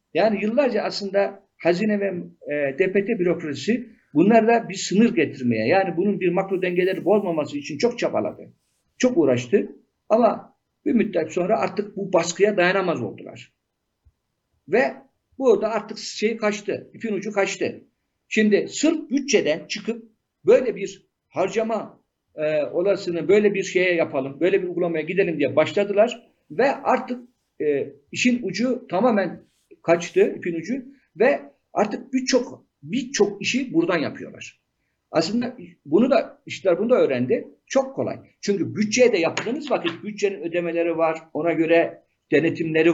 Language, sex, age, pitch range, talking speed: Turkish, male, 50-69, 170-220 Hz, 135 wpm